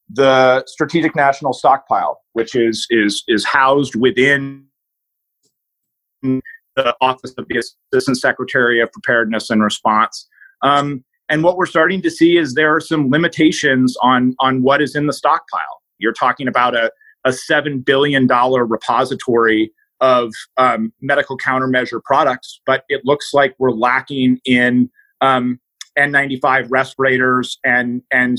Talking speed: 135 wpm